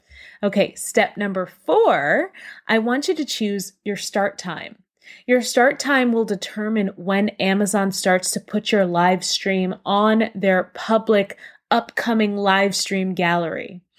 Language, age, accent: English, 20-39, American